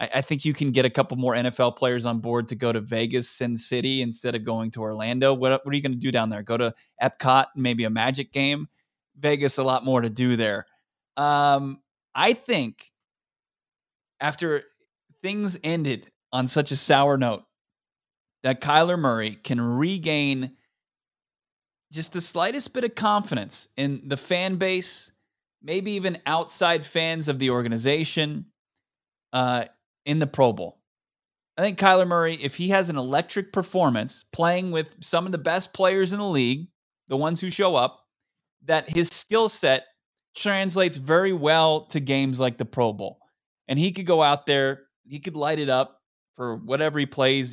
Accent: American